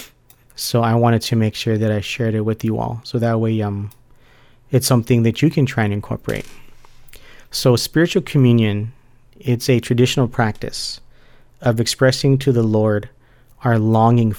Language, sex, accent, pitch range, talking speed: English, male, American, 115-125 Hz, 165 wpm